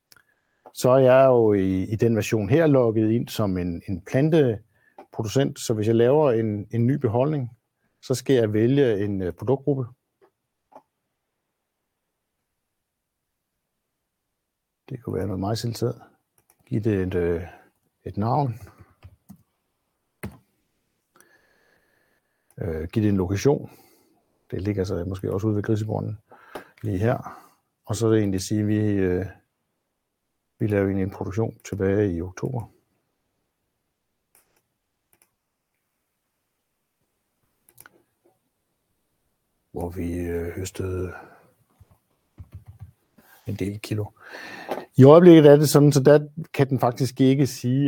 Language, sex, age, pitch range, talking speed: Danish, male, 60-79, 100-125 Hz, 115 wpm